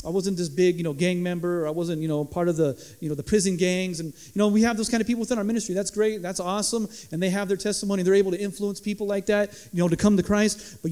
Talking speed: 310 wpm